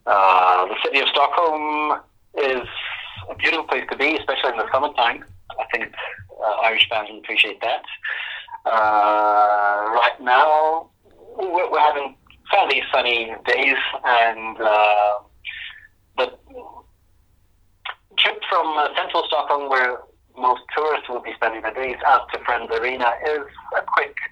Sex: male